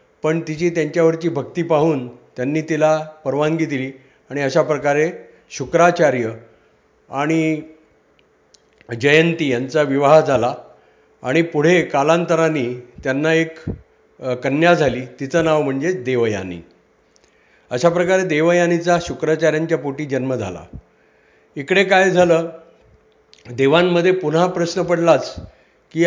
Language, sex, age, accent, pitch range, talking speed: Marathi, male, 50-69, native, 135-170 Hz, 100 wpm